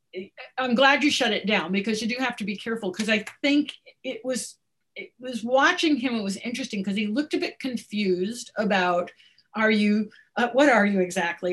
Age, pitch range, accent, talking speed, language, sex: 50-69, 185-250 Hz, American, 205 wpm, English, female